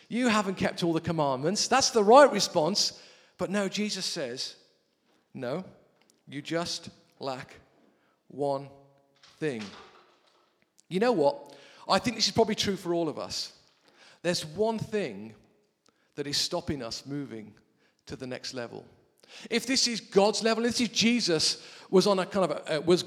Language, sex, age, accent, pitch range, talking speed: English, male, 40-59, British, 155-210 Hz, 160 wpm